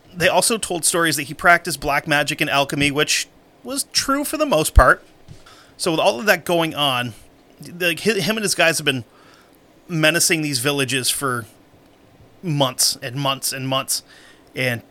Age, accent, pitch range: 30-49, American, 135-170 Hz